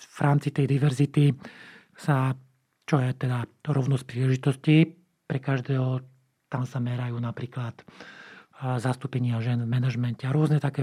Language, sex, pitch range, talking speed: Slovak, male, 125-145 Hz, 125 wpm